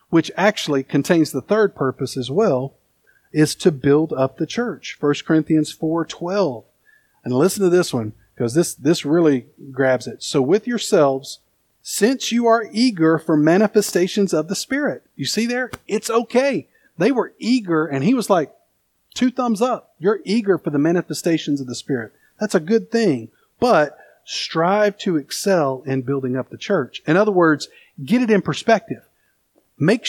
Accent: American